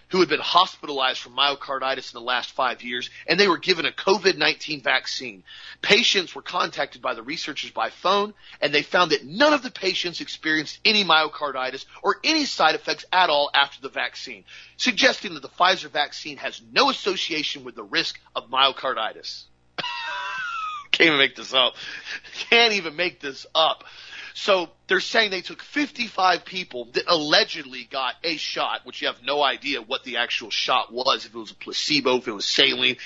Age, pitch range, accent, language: 40-59, 125-195 Hz, American, English